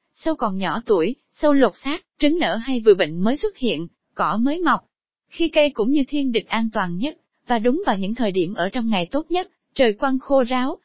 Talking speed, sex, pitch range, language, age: 230 wpm, female, 210-290 Hz, Vietnamese, 20-39